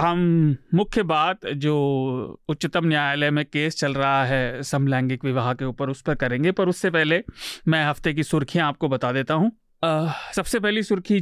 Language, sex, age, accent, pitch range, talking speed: Hindi, male, 30-49, native, 140-180 Hz, 175 wpm